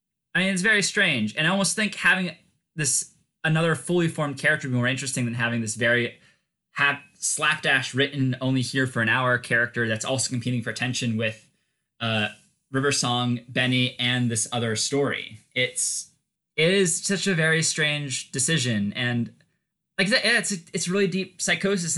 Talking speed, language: 170 wpm, English